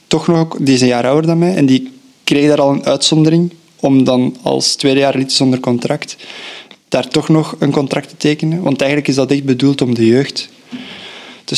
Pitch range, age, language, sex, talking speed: 125-150 Hz, 20-39, Dutch, male, 200 wpm